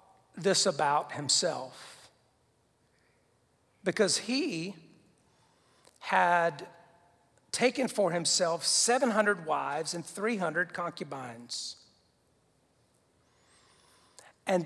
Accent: American